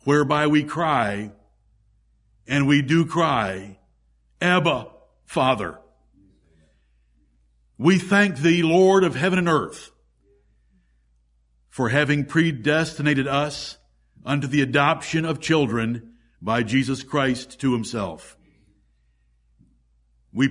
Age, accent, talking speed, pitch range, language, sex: 60-79, American, 95 wpm, 110-165 Hz, English, male